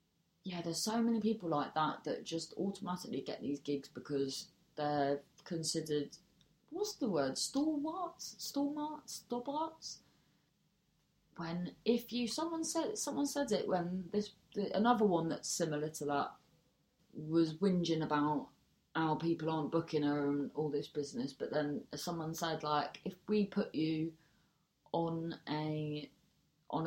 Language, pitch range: English, 145-185 Hz